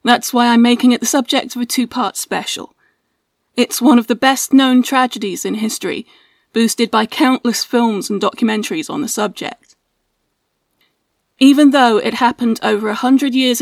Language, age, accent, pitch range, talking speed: English, 30-49, British, 230-275 Hz, 160 wpm